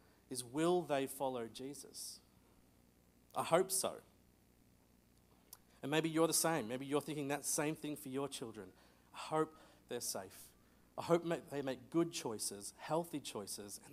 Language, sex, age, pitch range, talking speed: English, male, 40-59, 110-160 Hz, 150 wpm